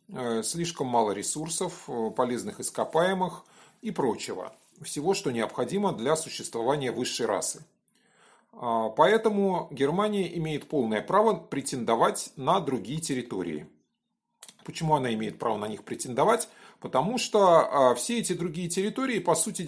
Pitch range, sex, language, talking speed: 125-195 Hz, male, Russian, 115 wpm